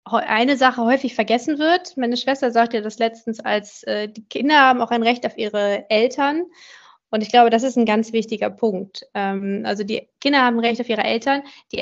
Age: 20-39